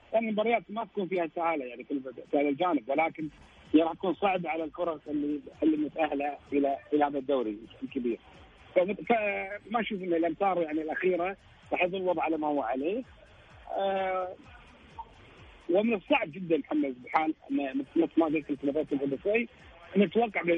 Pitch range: 145-190 Hz